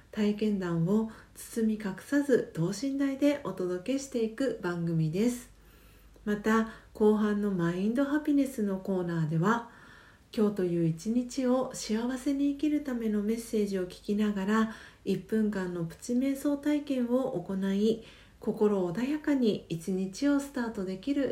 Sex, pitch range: female, 195-250 Hz